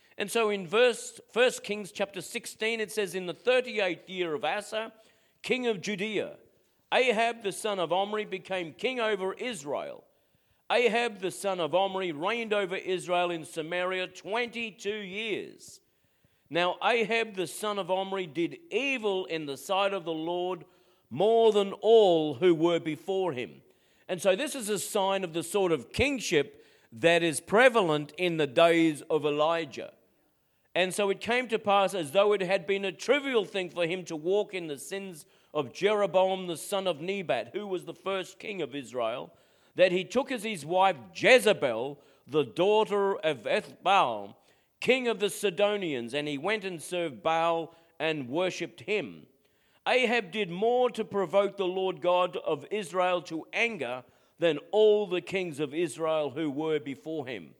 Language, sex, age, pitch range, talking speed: English, male, 50-69, 170-210 Hz, 165 wpm